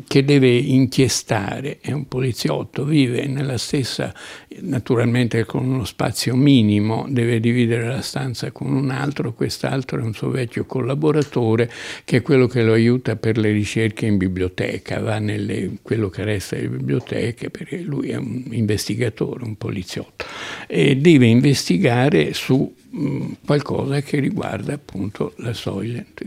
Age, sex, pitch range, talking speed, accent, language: 60-79, male, 105-130 Hz, 140 wpm, native, Italian